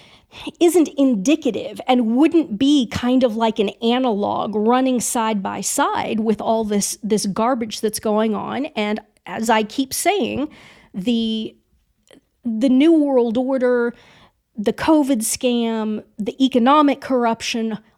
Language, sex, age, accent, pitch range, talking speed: English, female, 40-59, American, 220-280 Hz, 125 wpm